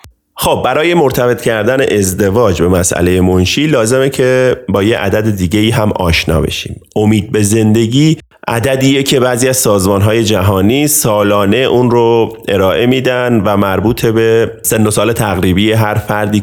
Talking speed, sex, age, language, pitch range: 155 wpm, male, 30-49, Persian, 90-120 Hz